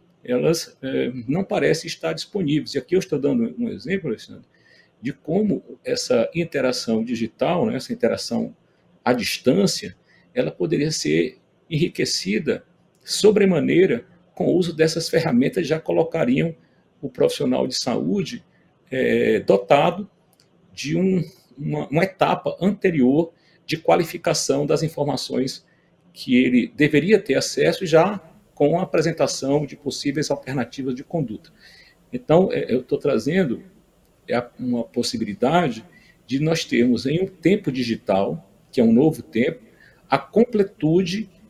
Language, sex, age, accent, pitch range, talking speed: Portuguese, male, 40-59, Brazilian, 140-190 Hz, 125 wpm